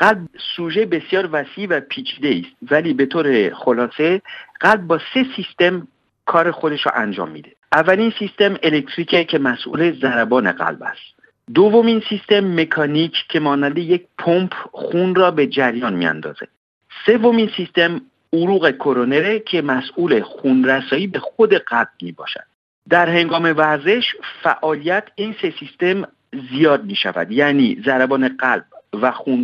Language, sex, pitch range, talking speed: Persian, male, 140-205 Hz, 140 wpm